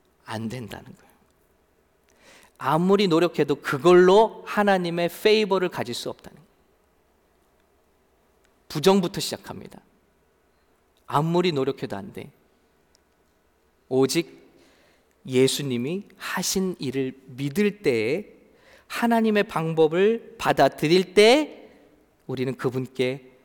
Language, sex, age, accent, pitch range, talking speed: English, male, 40-59, Korean, 140-225 Hz, 75 wpm